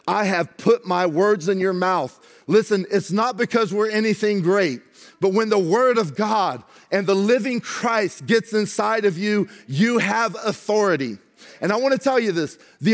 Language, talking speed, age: English, 185 wpm, 40-59